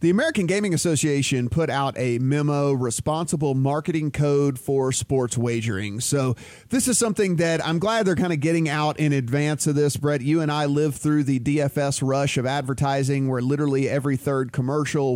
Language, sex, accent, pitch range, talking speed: English, male, American, 140-195 Hz, 180 wpm